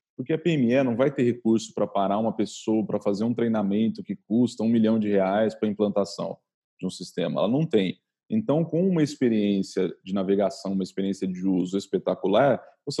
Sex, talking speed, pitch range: male, 190 wpm, 105-145 Hz